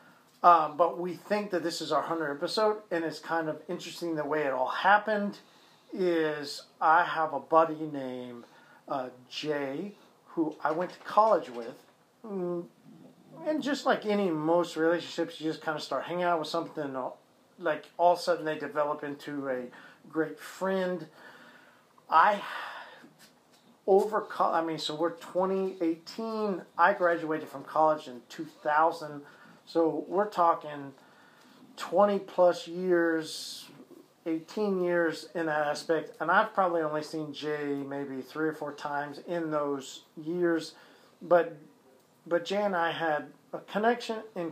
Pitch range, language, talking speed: 150-180 Hz, English, 150 wpm